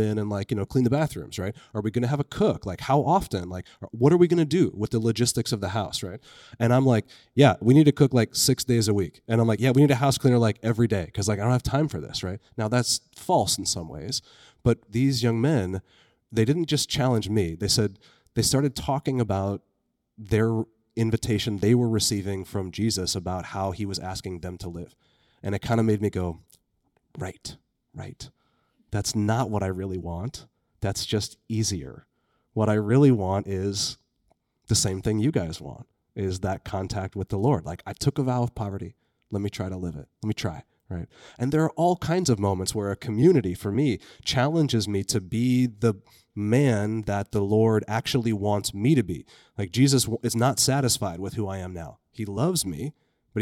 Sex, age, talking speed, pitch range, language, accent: male, 30-49, 220 wpm, 100-125 Hz, English, American